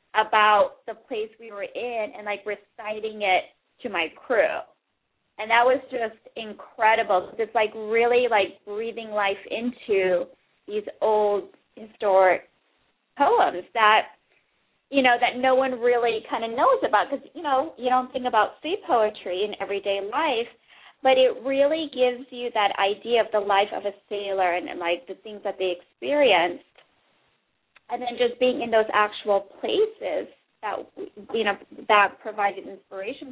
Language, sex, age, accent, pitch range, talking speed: English, female, 30-49, American, 205-255 Hz, 155 wpm